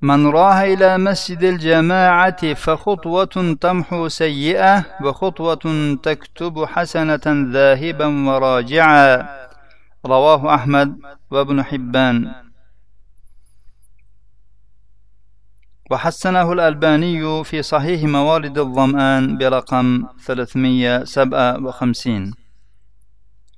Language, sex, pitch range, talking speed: Russian, male, 110-150 Hz, 65 wpm